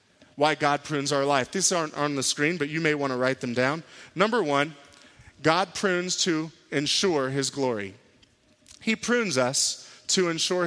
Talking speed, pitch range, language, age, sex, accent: 175 wpm, 150-200 Hz, English, 30-49, male, American